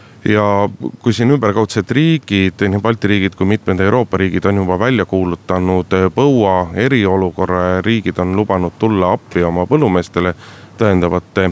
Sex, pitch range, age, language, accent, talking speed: male, 90-105 Hz, 30-49, Finnish, native, 140 wpm